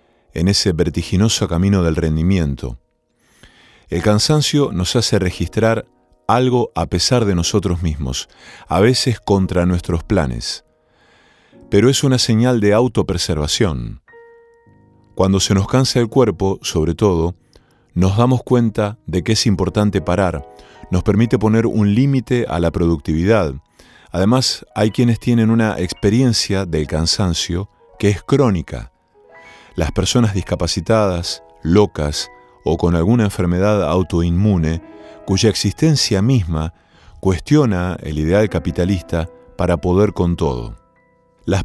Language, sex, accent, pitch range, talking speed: Spanish, male, Argentinian, 85-110 Hz, 120 wpm